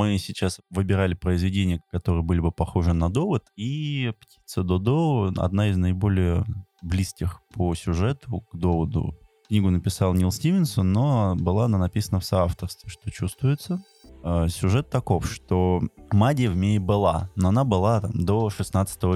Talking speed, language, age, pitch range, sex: 145 wpm, Russian, 20-39, 90-110 Hz, male